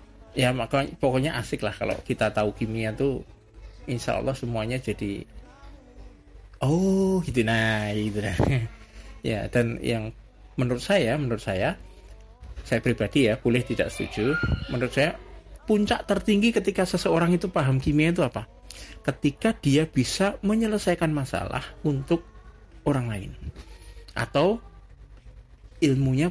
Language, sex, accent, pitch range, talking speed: Indonesian, male, native, 115-160 Hz, 120 wpm